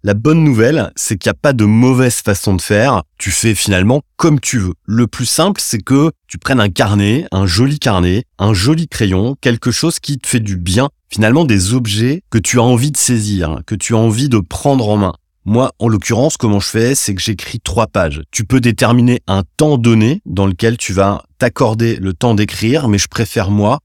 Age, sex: 30-49, male